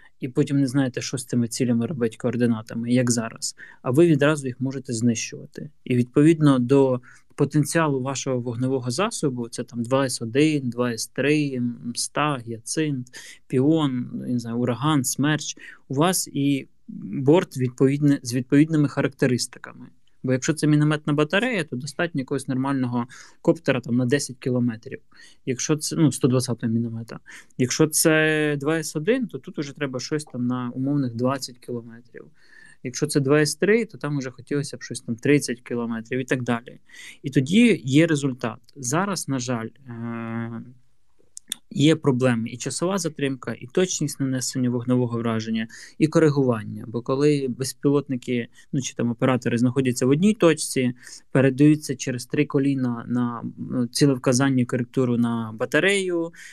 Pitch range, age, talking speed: 125-150 Hz, 20-39, 145 wpm